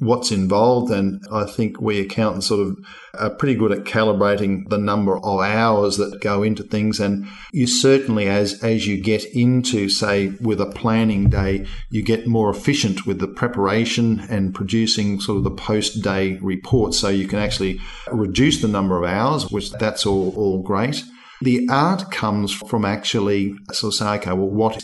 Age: 50-69